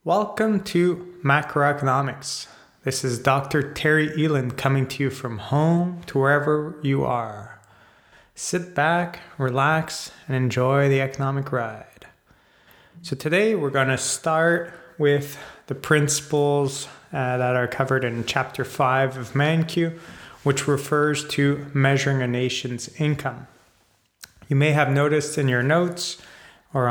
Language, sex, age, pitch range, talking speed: English, male, 30-49, 125-150 Hz, 130 wpm